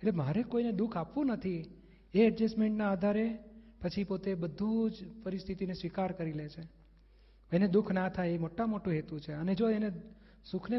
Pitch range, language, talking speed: 175-215 Hz, Gujarati, 170 wpm